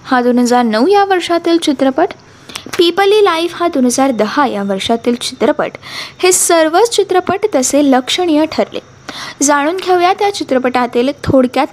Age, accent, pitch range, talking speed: 20-39, native, 250-355 Hz, 130 wpm